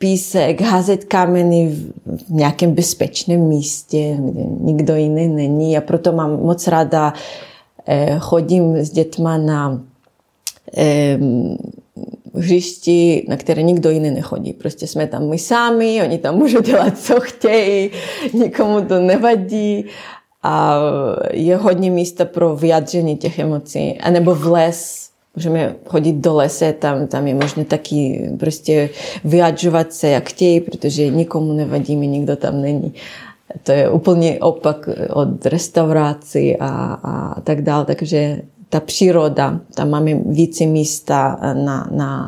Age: 30-49